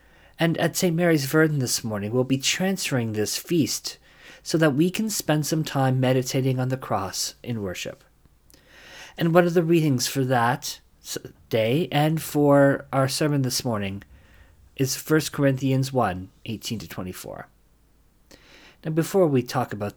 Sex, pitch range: male, 110-160 Hz